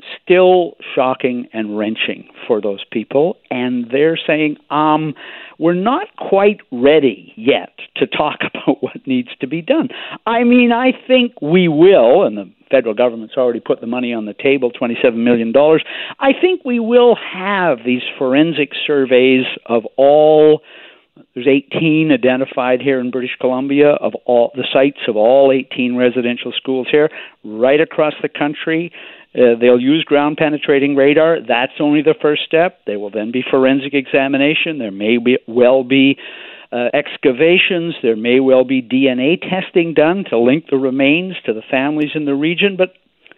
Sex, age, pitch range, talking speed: male, 50-69, 130-175 Hz, 160 wpm